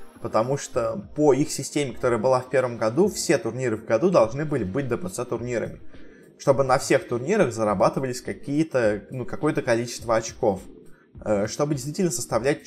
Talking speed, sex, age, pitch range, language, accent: 145 wpm, male, 20-39, 105-135 Hz, Russian, native